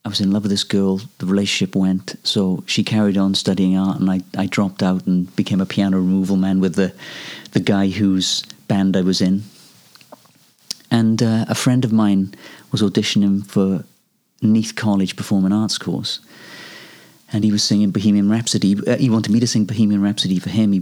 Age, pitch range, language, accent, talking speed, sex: 40-59, 95-110 Hz, English, British, 190 wpm, male